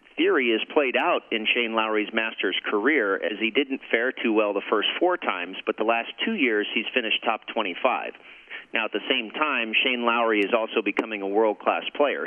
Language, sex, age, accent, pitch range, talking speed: English, male, 40-59, American, 105-120 Hz, 200 wpm